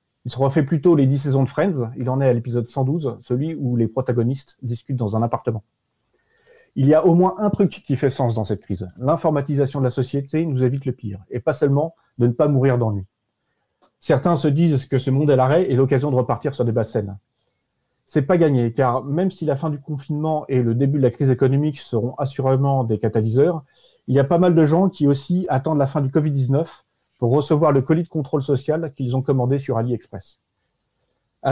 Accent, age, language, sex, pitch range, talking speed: French, 30-49, French, male, 125-155 Hz, 220 wpm